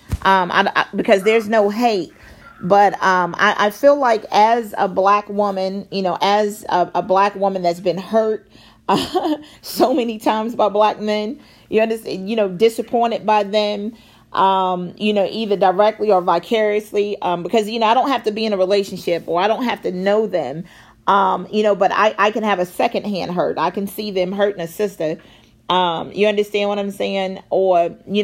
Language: English